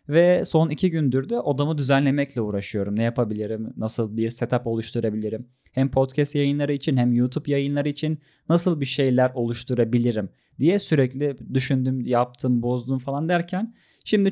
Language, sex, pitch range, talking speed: Turkish, male, 120-160 Hz, 145 wpm